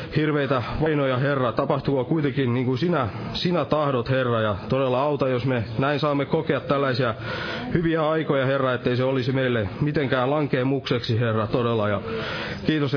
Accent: native